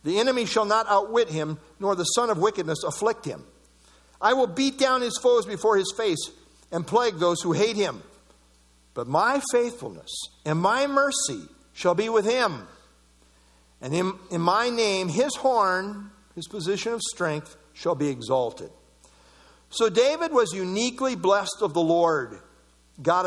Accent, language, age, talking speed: American, English, 60-79, 155 wpm